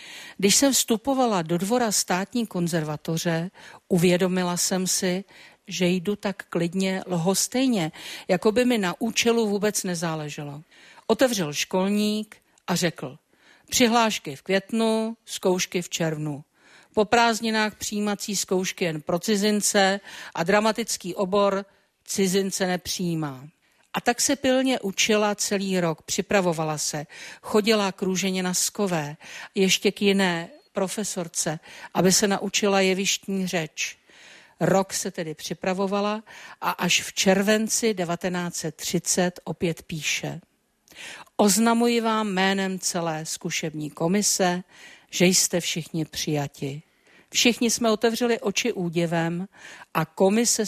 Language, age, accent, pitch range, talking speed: Czech, 50-69, native, 175-215 Hz, 110 wpm